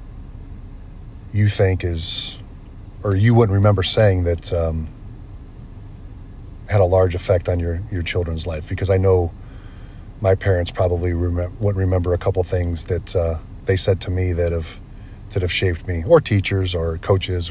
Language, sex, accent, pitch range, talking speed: English, male, American, 95-110 Hz, 160 wpm